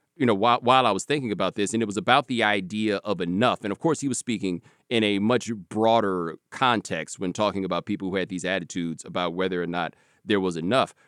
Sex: male